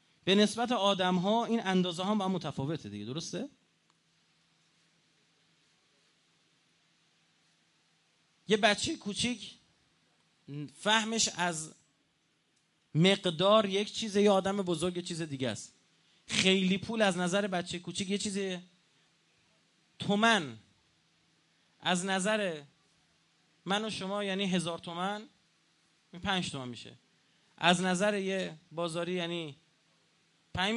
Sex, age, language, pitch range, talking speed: male, 30-49, Persian, 165-210 Hz, 100 wpm